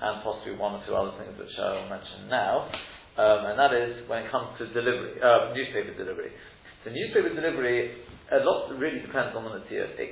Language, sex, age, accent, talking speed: English, male, 40-59, British, 210 wpm